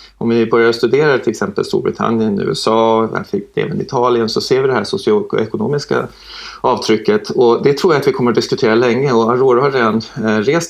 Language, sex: Swedish, male